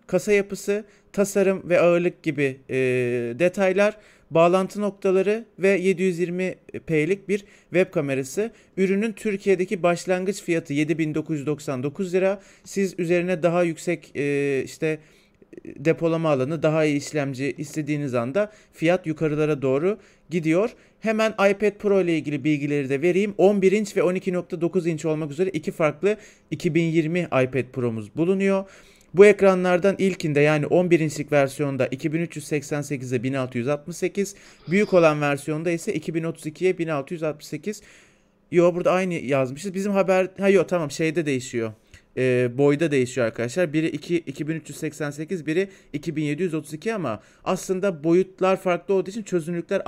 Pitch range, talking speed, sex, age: 150-190 Hz, 120 wpm, male, 40-59